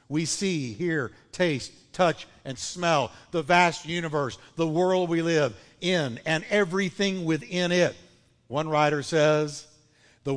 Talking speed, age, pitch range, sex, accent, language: 135 wpm, 60-79, 145-205 Hz, male, American, English